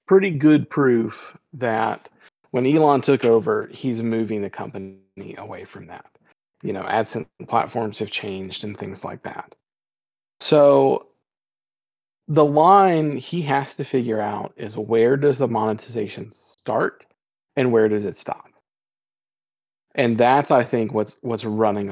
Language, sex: English, male